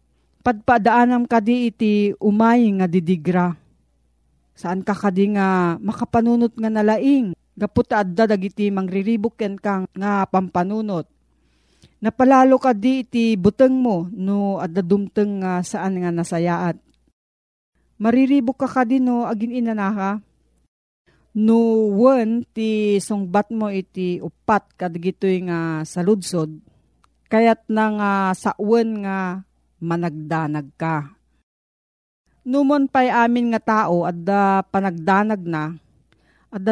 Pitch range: 175-225 Hz